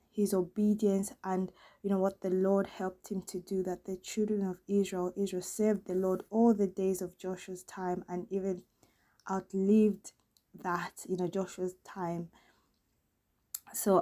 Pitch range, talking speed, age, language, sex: 185-215 Hz, 155 wpm, 20-39, English, female